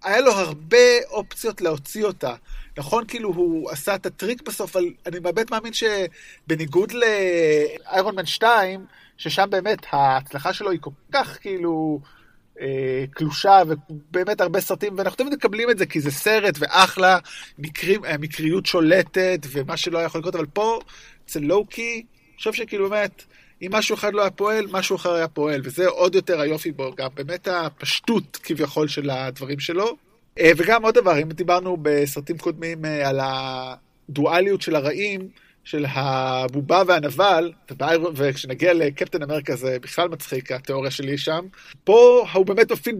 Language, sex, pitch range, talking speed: Hebrew, male, 150-205 Hz, 145 wpm